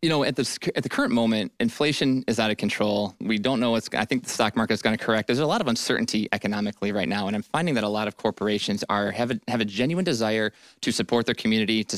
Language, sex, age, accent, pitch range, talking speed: English, male, 20-39, American, 105-125 Hz, 270 wpm